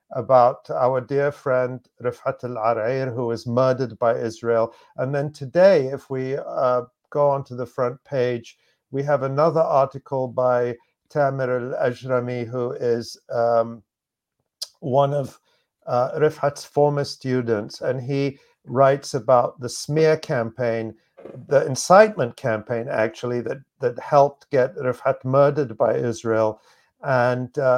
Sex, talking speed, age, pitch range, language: male, 125 wpm, 50-69, 120-145 Hz, English